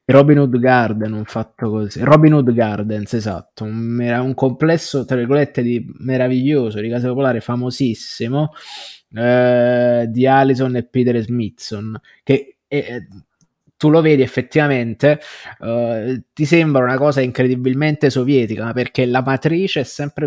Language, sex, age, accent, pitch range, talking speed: Italian, male, 20-39, native, 120-145 Hz, 140 wpm